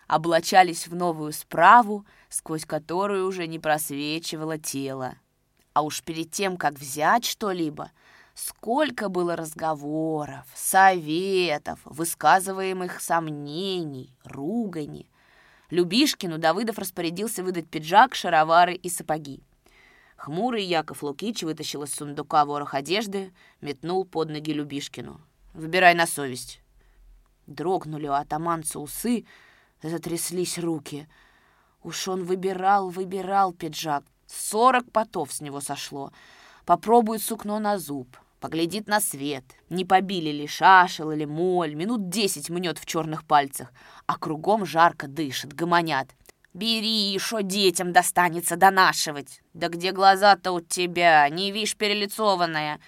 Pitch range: 150-200 Hz